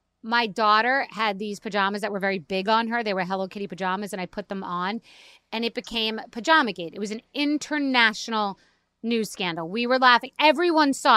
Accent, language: American, English